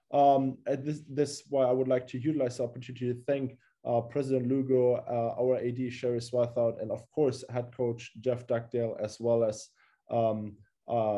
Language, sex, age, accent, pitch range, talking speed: English, male, 20-39, German, 115-135 Hz, 175 wpm